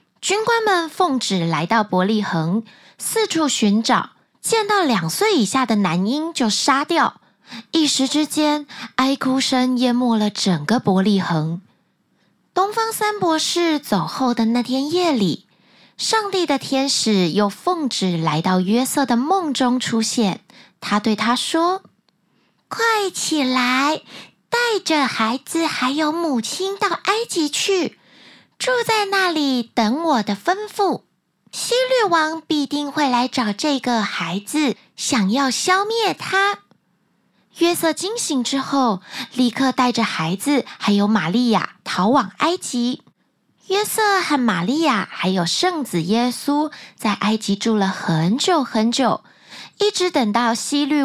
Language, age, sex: Chinese, 20-39, female